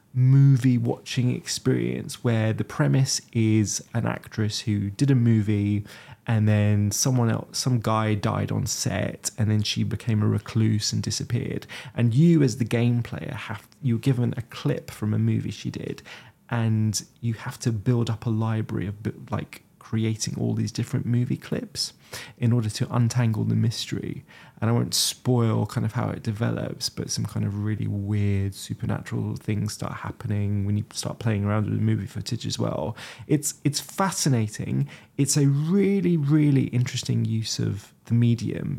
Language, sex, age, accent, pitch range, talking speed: English, male, 20-39, British, 110-130 Hz, 170 wpm